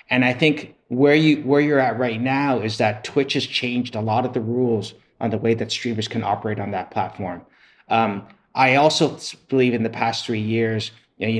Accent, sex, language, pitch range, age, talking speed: American, male, English, 110-130 Hz, 30-49, 210 wpm